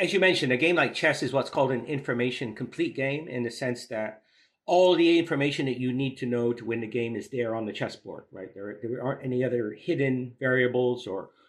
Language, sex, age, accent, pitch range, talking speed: English, male, 50-69, American, 115-135 Hz, 230 wpm